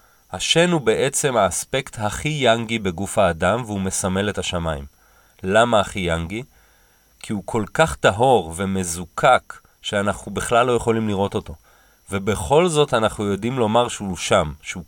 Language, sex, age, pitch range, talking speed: Hebrew, male, 30-49, 95-125 Hz, 140 wpm